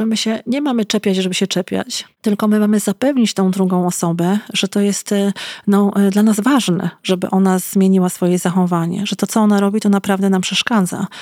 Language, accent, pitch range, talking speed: Polish, native, 190-215 Hz, 195 wpm